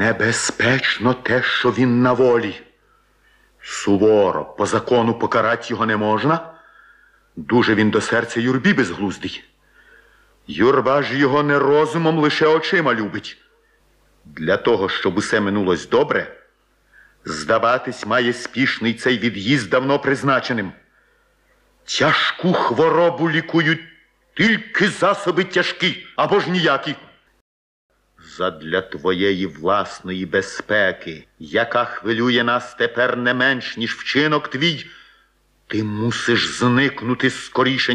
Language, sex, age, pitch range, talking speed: Ukrainian, male, 50-69, 105-150 Hz, 105 wpm